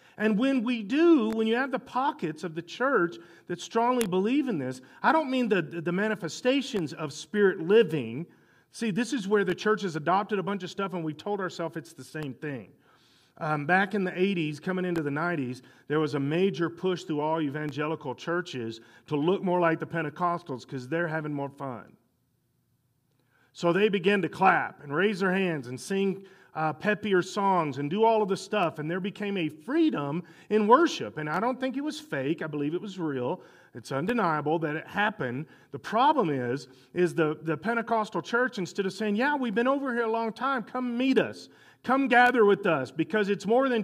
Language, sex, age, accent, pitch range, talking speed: English, male, 40-59, American, 155-215 Hz, 205 wpm